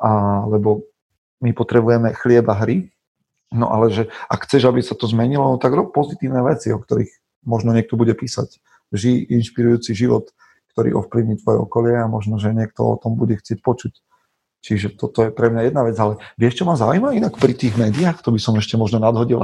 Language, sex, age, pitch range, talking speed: Slovak, male, 40-59, 105-125 Hz, 195 wpm